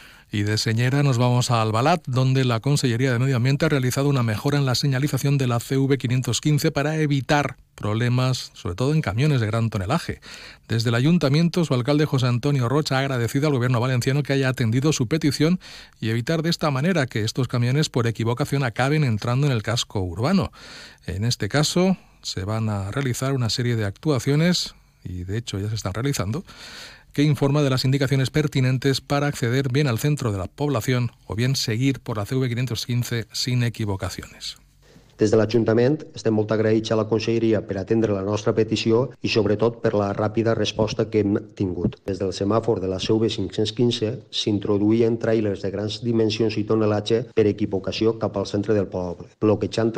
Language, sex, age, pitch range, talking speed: Spanish, male, 40-59, 110-135 Hz, 185 wpm